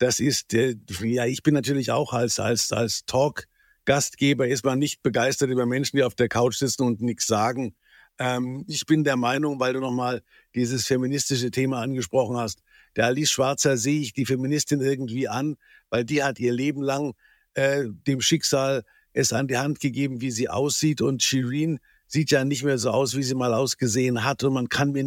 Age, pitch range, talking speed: 50-69, 125-140 Hz, 190 wpm